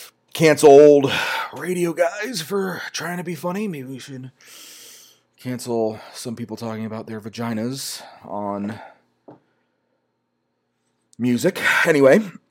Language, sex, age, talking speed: English, male, 30-49, 105 wpm